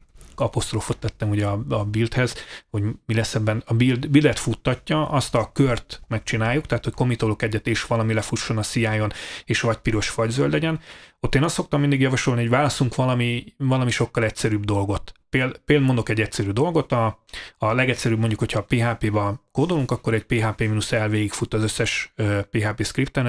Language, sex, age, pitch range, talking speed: Hungarian, male, 30-49, 110-130 Hz, 175 wpm